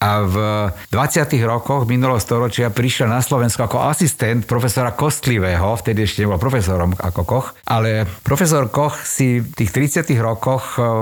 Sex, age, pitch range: male, 60-79, 100-125 Hz